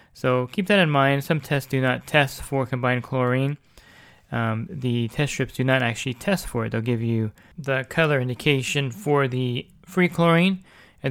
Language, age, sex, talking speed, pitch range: English, 20-39, male, 185 wpm, 120-135 Hz